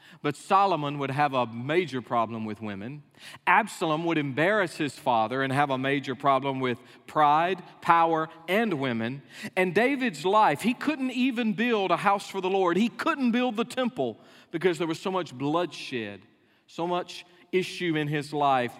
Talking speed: 170 wpm